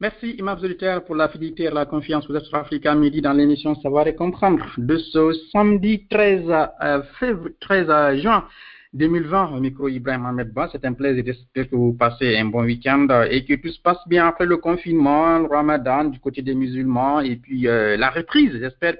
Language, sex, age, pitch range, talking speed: French, male, 50-69, 125-165 Hz, 190 wpm